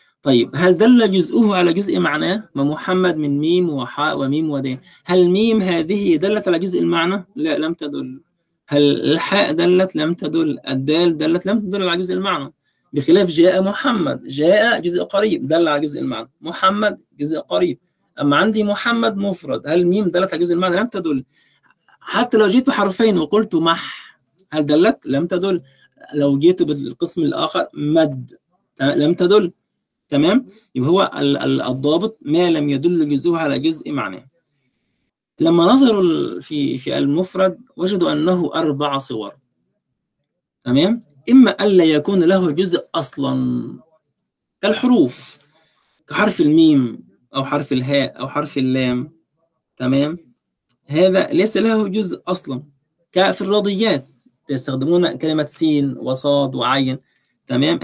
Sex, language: male, Arabic